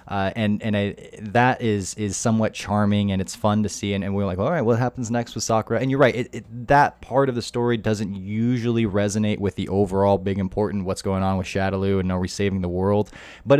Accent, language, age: American, English, 20-39